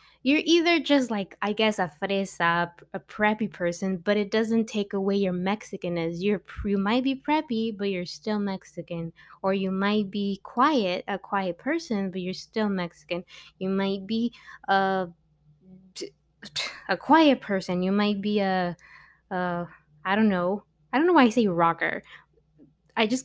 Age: 20-39